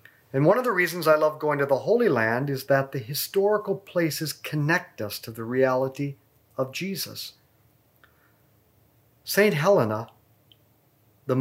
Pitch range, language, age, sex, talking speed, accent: 125-165 Hz, English, 50-69, male, 140 wpm, American